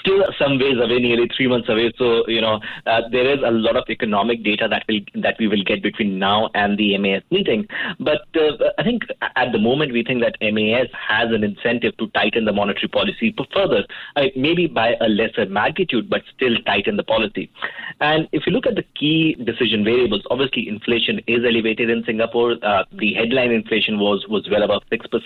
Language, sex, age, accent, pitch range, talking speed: English, male, 30-49, Indian, 110-135 Hz, 200 wpm